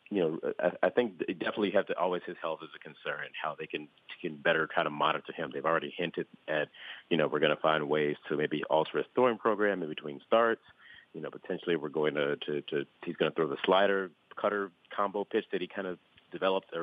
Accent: American